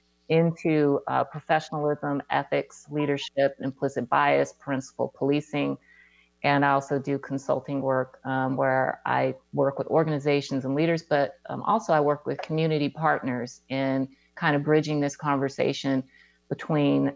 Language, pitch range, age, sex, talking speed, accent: English, 135-155 Hz, 30-49, female, 135 wpm, American